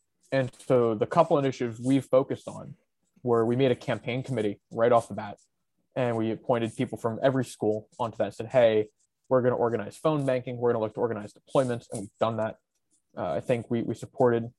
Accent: American